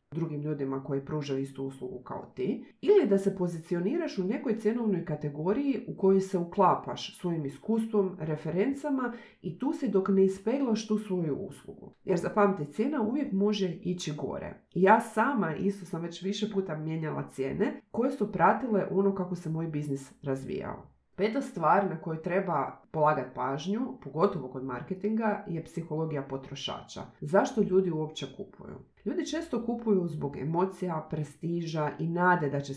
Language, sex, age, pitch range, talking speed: Croatian, female, 30-49, 155-210 Hz, 155 wpm